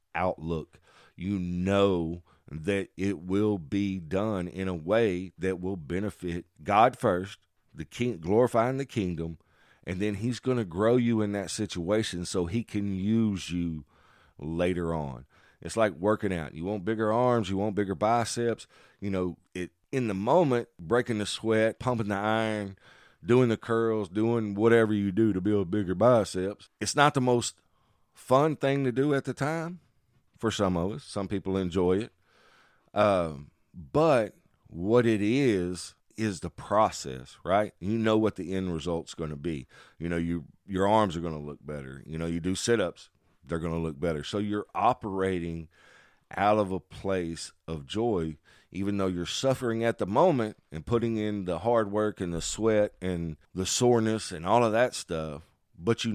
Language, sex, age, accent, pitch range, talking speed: English, male, 50-69, American, 85-110 Hz, 175 wpm